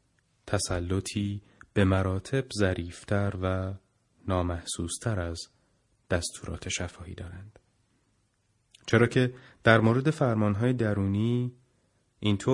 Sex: male